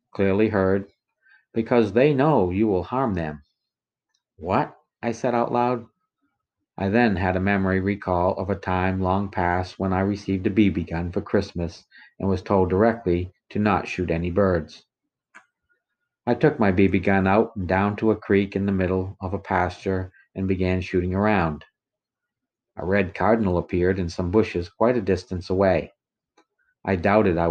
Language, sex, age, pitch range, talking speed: English, male, 50-69, 90-105 Hz, 170 wpm